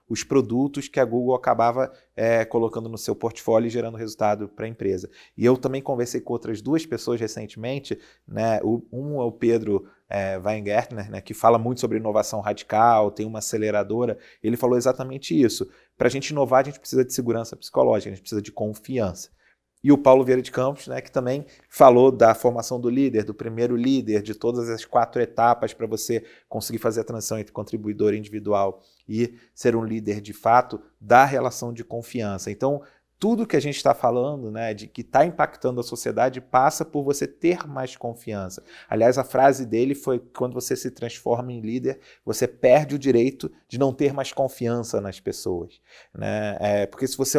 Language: Portuguese